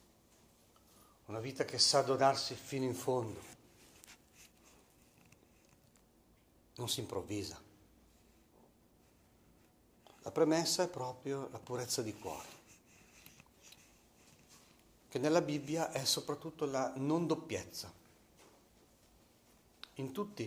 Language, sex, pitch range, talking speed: Italian, male, 100-135 Hz, 85 wpm